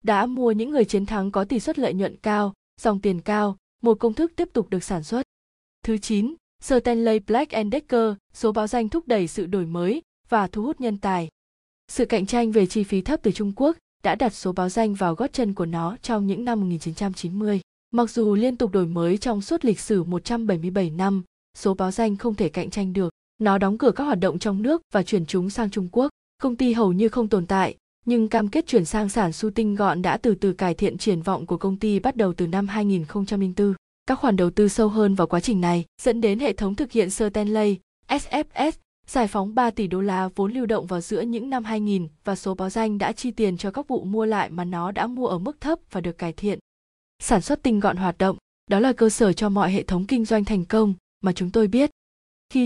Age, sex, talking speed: 20-39, female, 240 wpm